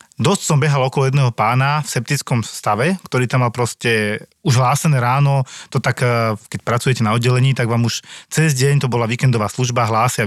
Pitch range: 115-140 Hz